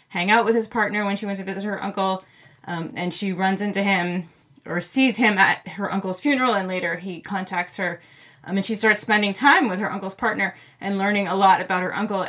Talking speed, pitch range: 230 wpm, 180-240 Hz